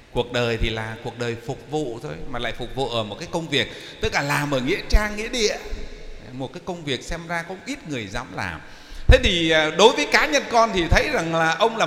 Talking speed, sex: 255 wpm, male